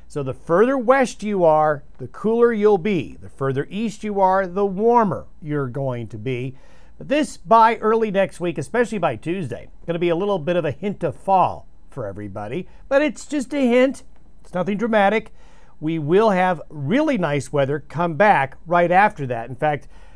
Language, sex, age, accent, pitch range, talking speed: English, male, 50-69, American, 140-200 Hz, 190 wpm